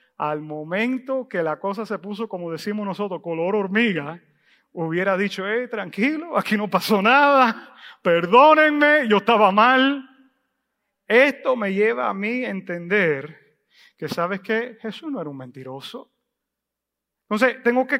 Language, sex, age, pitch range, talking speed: English, male, 40-59, 205-265 Hz, 140 wpm